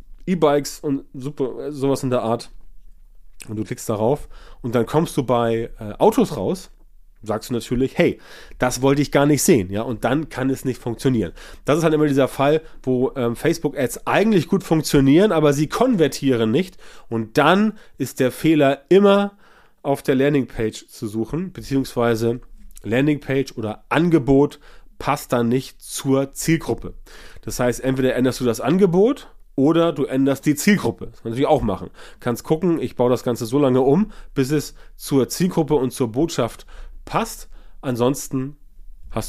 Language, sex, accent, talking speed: German, male, German, 165 wpm